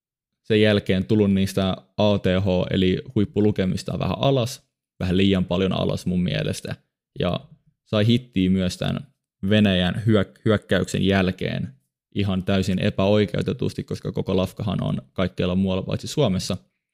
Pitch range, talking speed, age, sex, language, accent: 95-105 Hz, 120 wpm, 20-39, male, Finnish, native